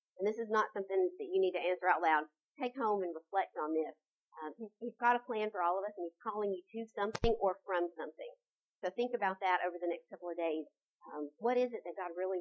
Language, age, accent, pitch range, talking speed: English, 50-69, American, 175-235 Hz, 255 wpm